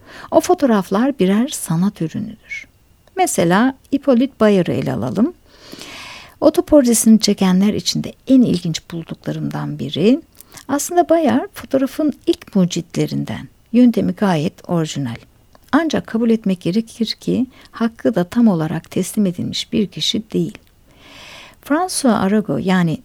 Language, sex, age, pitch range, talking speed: Turkish, female, 60-79, 175-245 Hz, 110 wpm